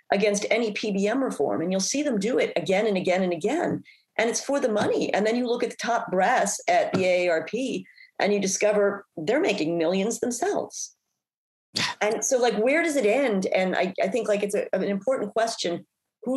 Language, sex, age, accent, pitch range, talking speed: English, female, 40-59, American, 170-225 Hz, 200 wpm